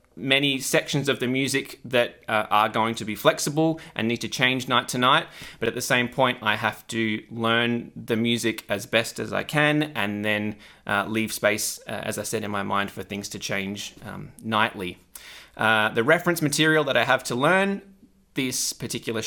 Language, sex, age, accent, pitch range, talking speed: English, male, 20-39, Australian, 110-140 Hz, 200 wpm